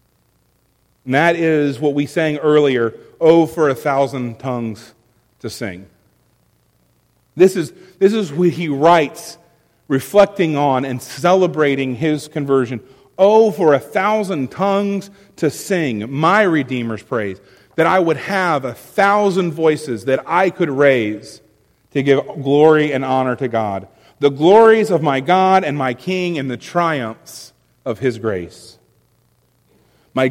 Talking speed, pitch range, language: 135 wpm, 120-175 Hz, English